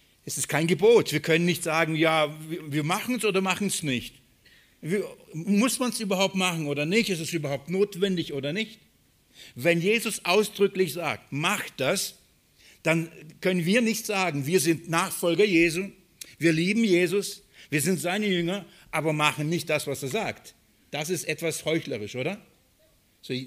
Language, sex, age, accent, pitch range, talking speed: German, male, 60-79, German, 140-190 Hz, 165 wpm